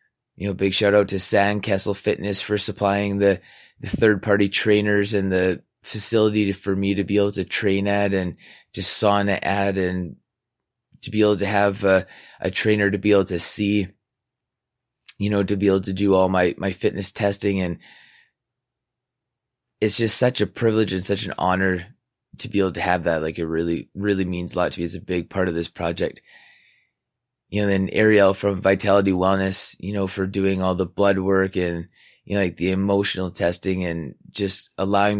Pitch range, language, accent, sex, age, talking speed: 95-105 Hz, English, American, male, 20-39, 190 wpm